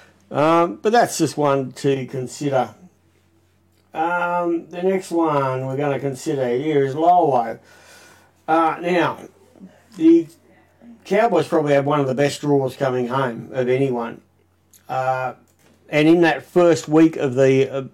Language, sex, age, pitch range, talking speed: English, male, 60-79, 130-155 Hz, 140 wpm